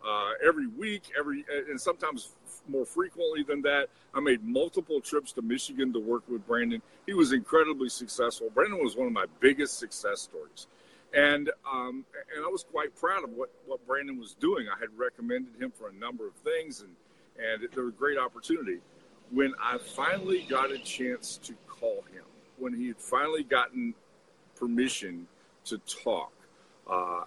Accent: American